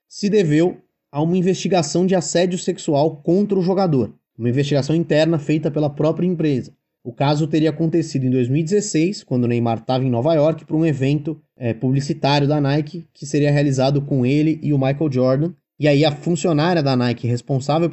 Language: Portuguese